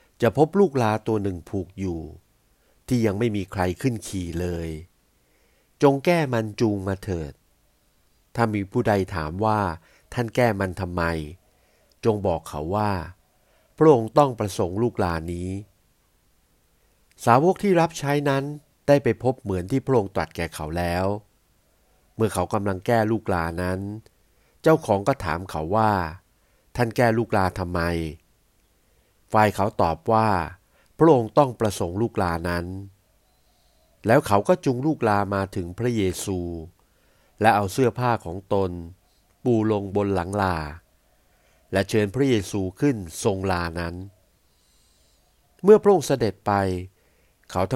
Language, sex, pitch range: Thai, male, 90-115 Hz